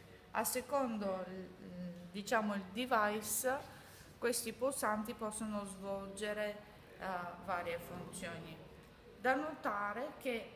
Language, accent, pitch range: Italian, native, 180-220 Hz